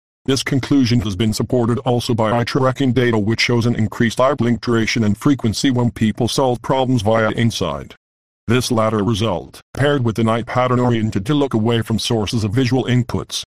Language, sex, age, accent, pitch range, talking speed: English, male, 50-69, American, 110-125 Hz, 185 wpm